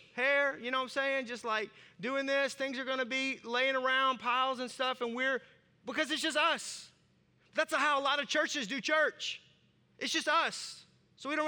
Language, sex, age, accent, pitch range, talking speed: English, male, 30-49, American, 220-270 Hz, 205 wpm